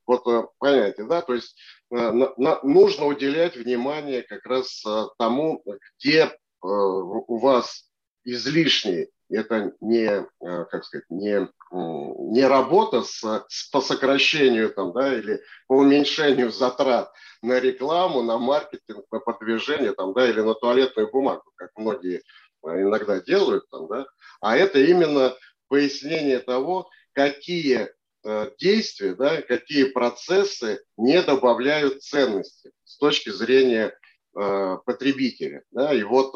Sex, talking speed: male, 125 wpm